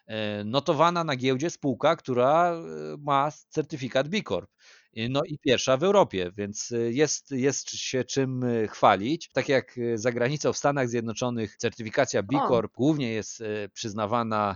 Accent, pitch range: native, 105-135 Hz